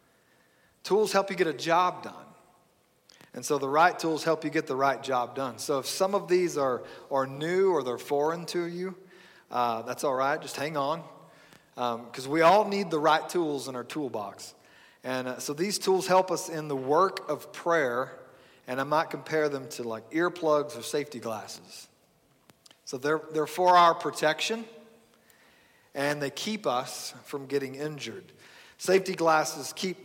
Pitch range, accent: 135-170 Hz, American